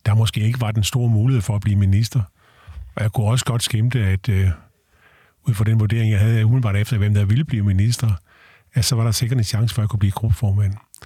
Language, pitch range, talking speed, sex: Danish, 105-125 Hz, 245 wpm, male